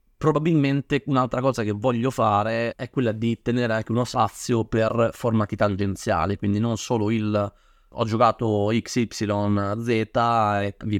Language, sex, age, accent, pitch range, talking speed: Italian, male, 30-49, native, 100-120 Hz, 135 wpm